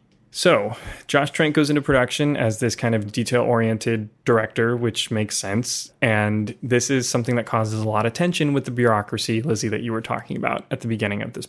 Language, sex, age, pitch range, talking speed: English, male, 20-39, 115-140 Hz, 205 wpm